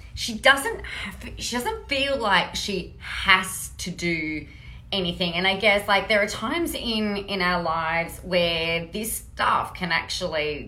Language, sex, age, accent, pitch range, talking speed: English, female, 30-49, Australian, 170-230 Hz, 155 wpm